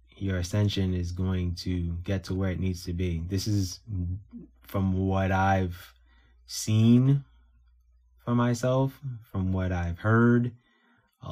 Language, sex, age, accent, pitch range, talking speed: English, male, 20-39, American, 85-105 Hz, 135 wpm